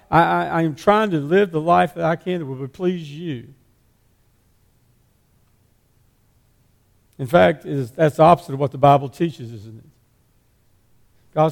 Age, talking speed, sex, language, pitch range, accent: 50-69, 145 wpm, male, English, 120-165 Hz, American